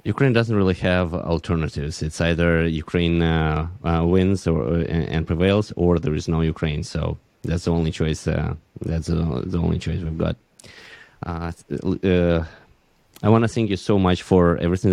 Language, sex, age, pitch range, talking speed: Ukrainian, male, 20-39, 80-90 Hz, 175 wpm